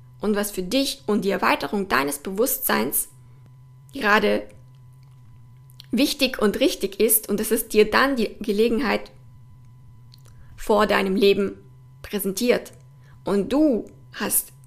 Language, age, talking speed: German, 20-39, 115 wpm